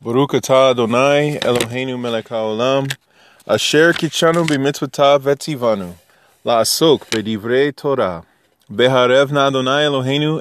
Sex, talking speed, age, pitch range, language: male, 100 wpm, 20-39, 120-150 Hz, English